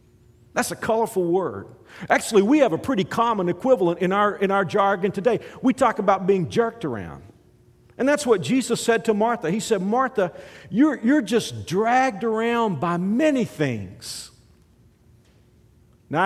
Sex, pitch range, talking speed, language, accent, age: male, 135-195 Hz, 155 wpm, English, American, 50-69